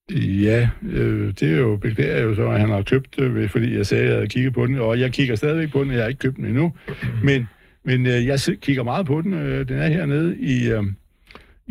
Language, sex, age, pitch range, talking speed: Danish, male, 60-79, 110-145 Hz, 260 wpm